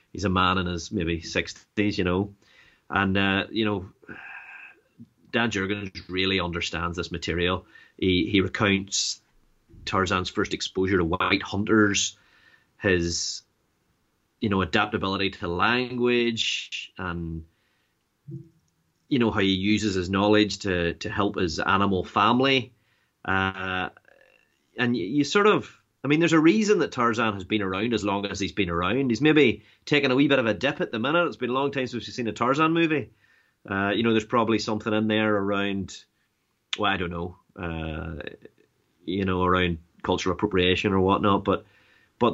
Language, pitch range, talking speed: English, 95-115 Hz, 165 wpm